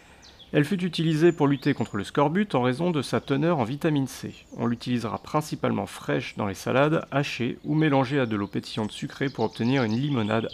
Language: French